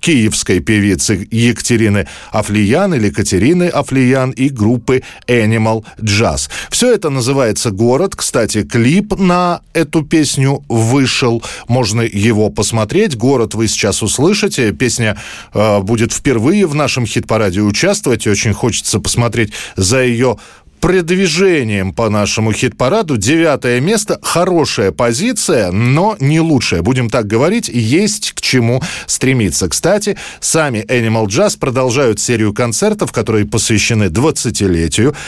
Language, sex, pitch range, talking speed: Russian, male, 110-150 Hz, 115 wpm